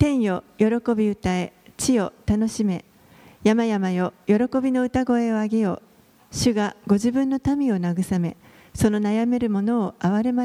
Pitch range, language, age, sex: 185-230 Hz, Japanese, 40-59, female